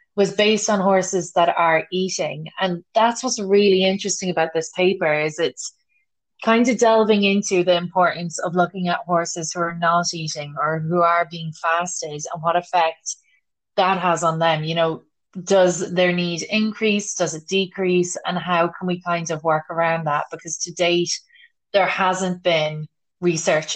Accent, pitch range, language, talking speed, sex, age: Irish, 165-195 Hz, English, 170 wpm, female, 20-39